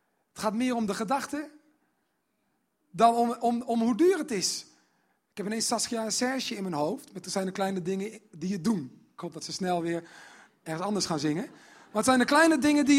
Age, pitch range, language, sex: 40-59, 160-235 Hz, Dutch, male